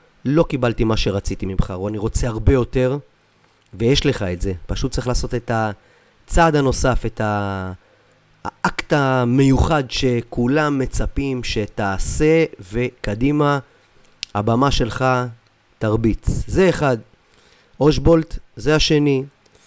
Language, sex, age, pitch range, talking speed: Hebrew, male, 30-49, 105-135 Hz, 105 wpm